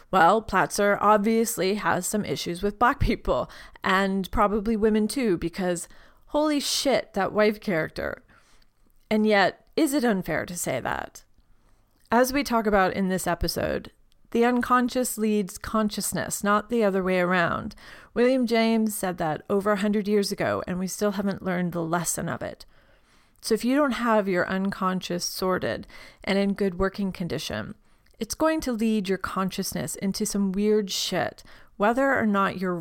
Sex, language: female, English